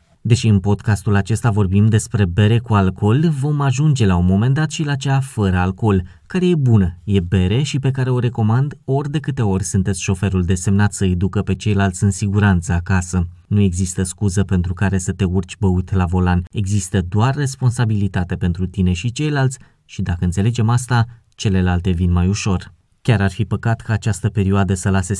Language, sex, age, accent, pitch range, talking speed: Romanian, male, 20-39, native, 95-130 Hz, 190 wpm